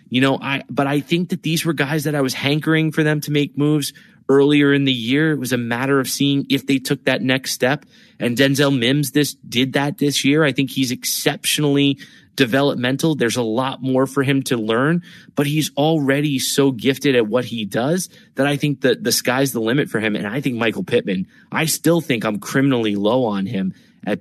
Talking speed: 220 wpm